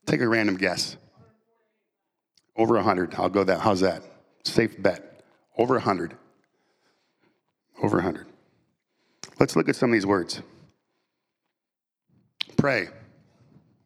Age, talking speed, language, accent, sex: 50-69, 110 wpm, English, American, male